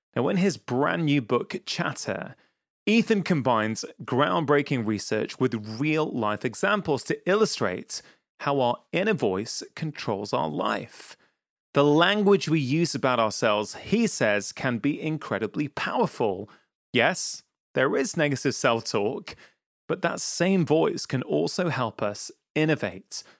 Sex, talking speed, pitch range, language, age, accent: male, 130 wpm, 125-170 Hz, English, 30-49, British